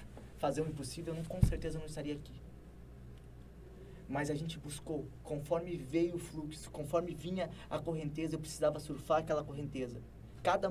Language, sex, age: Portuguese, male, 20-39